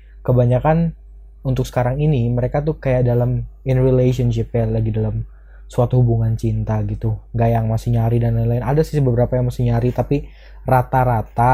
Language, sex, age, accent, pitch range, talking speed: Indonesian, male, 20-39, native, 115-130 Hz, 160 wpm